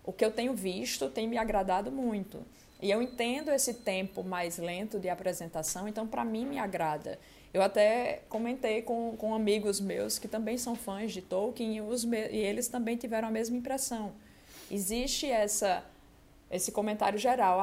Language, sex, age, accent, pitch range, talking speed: Portuguese, female, 20-39, Brazilian, 195-240 Hz, 175 wpm